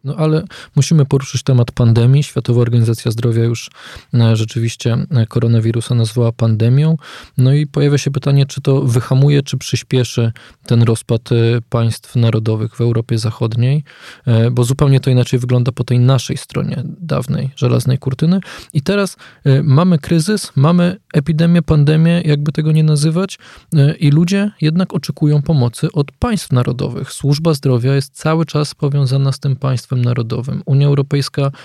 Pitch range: 115-145 Hz